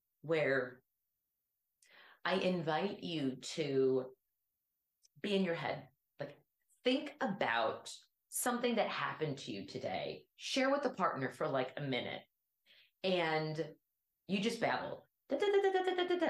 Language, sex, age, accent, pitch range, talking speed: English, female, 30-49, American, 150-225 Hz, 140 wpm